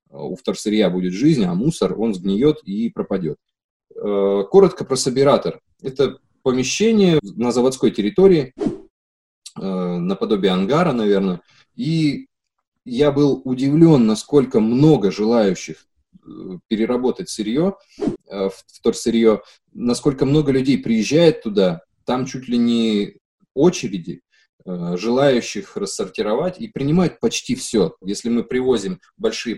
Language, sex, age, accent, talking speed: Russian, male, 20-39, native, 105 wpm